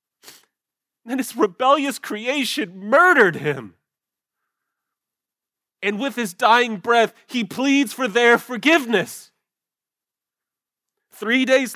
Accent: American